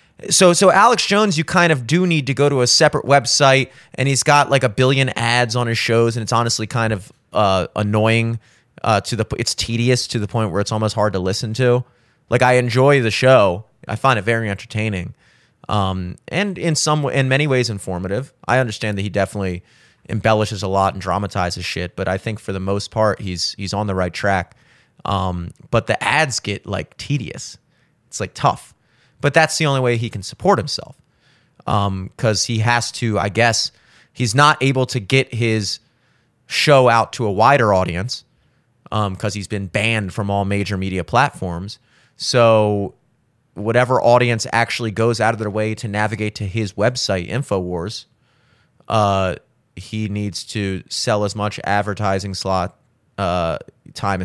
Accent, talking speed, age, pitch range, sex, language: American, 185 wpm, 30-49, 100-125 Hz, male, English